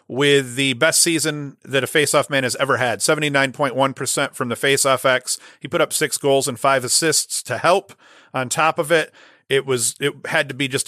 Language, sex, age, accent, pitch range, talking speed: English, male, 40-59, American, 125-145 Hz, 205 wpm